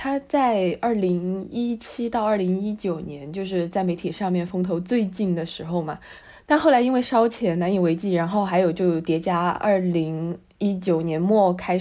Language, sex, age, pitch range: Chinese, female, 20-39, 175-215 Hz